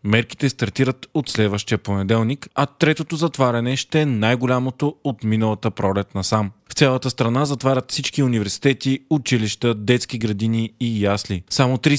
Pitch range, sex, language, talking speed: 115-135 Hz, male, Bulgarian, 145 wpm